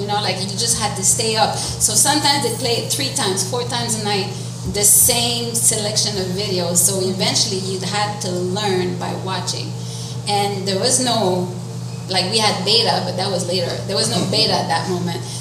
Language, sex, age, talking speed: English, female, 30-49, 205 wpm